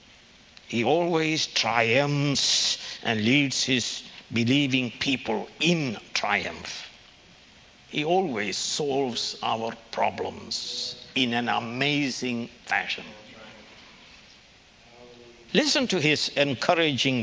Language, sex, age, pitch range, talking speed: English, male, 60-79, 120-200 Hz, 80 wpm